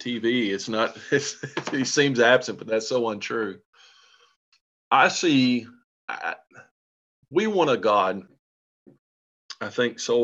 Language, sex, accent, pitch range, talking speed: English, male, American, 100-130 Hz, 125 wpm